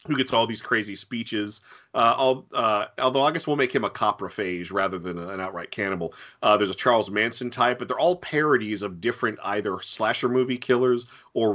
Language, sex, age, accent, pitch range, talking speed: English, male, 40-59, American, 105-125 Hz, 195 wpm